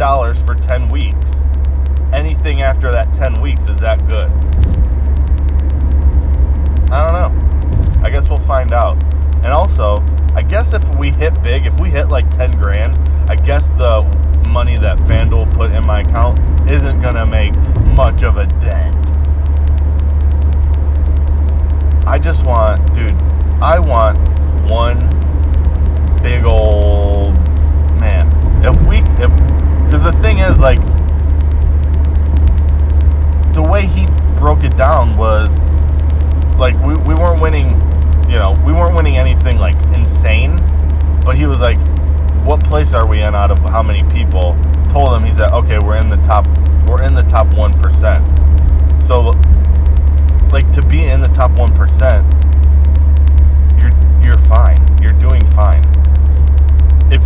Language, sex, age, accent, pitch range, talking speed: English, male, 20-39, American, 70-75 Hz, 140 wpm